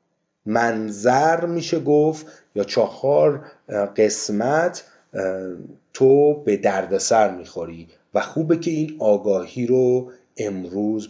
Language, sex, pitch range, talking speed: Persian, male, 115-165 Hz, 90 wpm